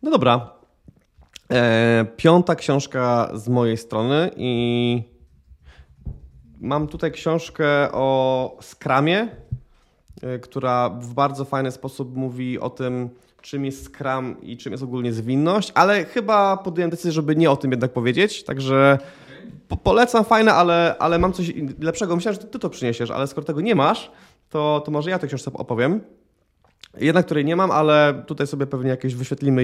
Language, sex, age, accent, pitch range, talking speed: Polish, male, 20-39, native, 120-150 Hz, 150 wpm